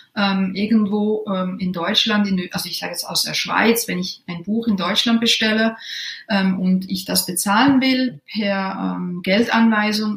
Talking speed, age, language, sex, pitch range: 165 wpm, 30-49, German, female, 190-225 Hz